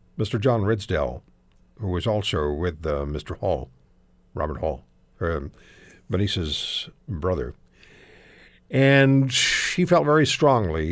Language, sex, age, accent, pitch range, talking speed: English, male, 60-79, American, 85-130 Hz, 105 wpm